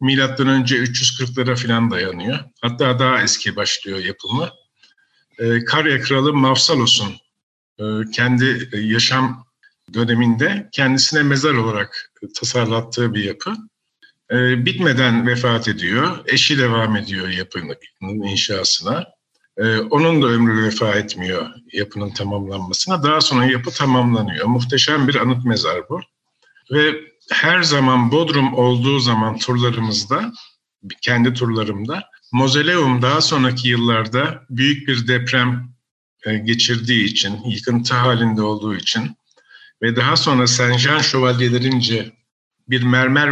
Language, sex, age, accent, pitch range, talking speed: Turkish, male, 50-69, native, 115-135 Hz, 105 wpm